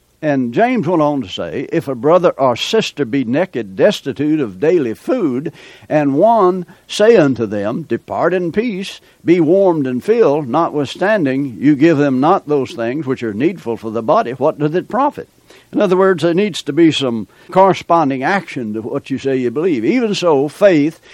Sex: male